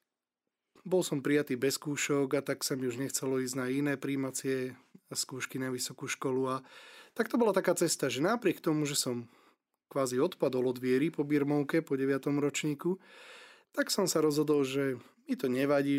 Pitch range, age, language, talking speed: 130-145 Hz, 20-39, Slovak, 175 wpm